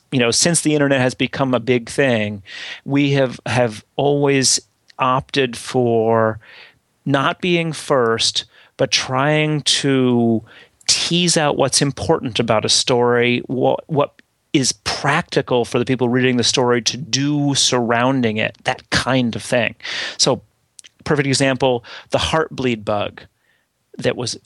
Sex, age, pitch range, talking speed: male, 30-49, 115-140 Hz, 135 wpm